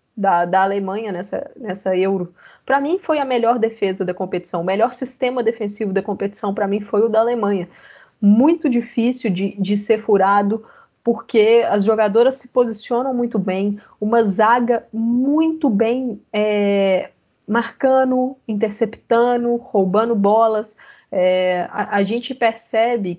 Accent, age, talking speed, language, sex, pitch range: Brazilian, 20-39, 135 wpm, Portuguese, female, 200-250 Hz